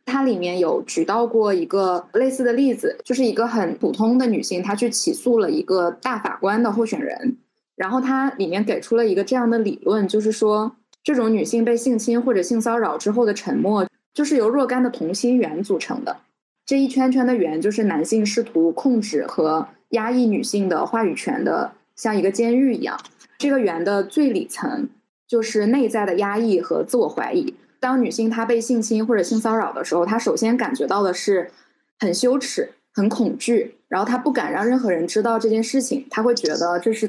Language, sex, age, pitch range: Chinese, female, 10-29, 205-255 Hz